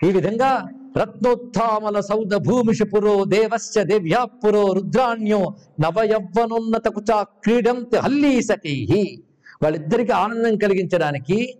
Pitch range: 175-230 Hz